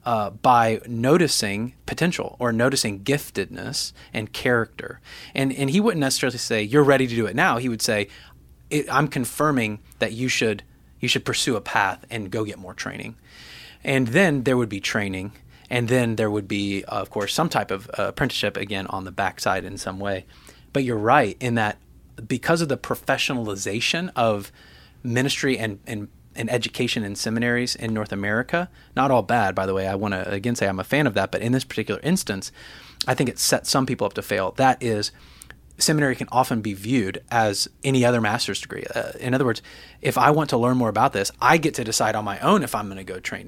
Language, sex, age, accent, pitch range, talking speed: English, male, 30-49, American, 105-130 Hz, 210 wpm